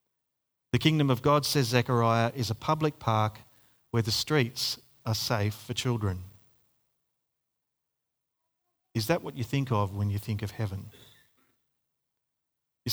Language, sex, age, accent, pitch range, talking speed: English, male, 40-59, Australian, 110-135 Hz, 135 wpm